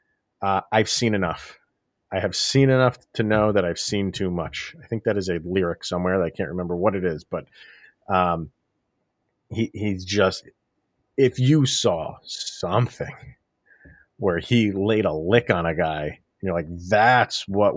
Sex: male